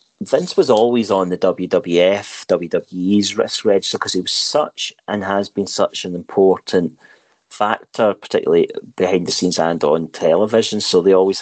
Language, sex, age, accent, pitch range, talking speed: English, male, 40-59, British, 90-125 Hz, 160 wpm